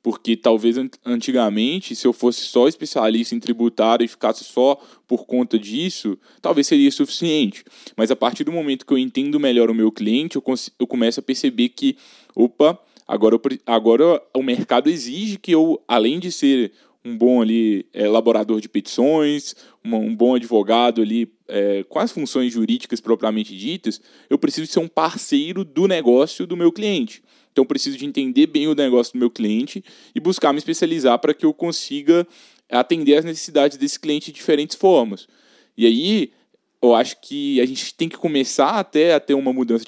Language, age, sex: Portuguese, 10-29, male